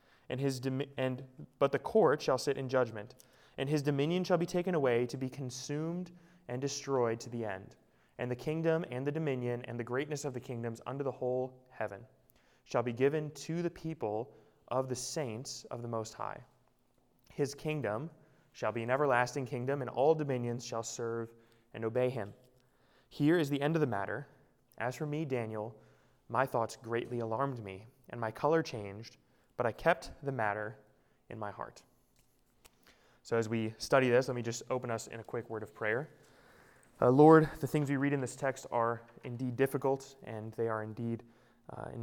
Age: 20-39